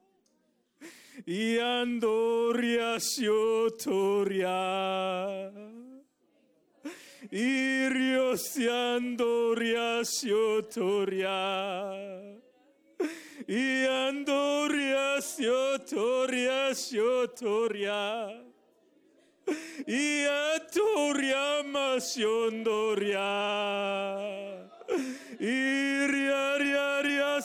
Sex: male